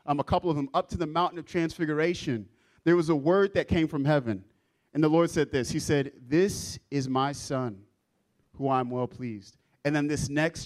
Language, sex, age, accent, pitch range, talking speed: English, male, 30-49, American, 130-175 Hz, 215 wpm